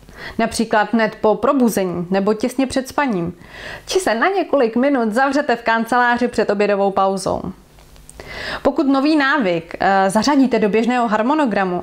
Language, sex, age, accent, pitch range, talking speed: Czech, female, 30-49, native, 205-260 Hz, 130 wpm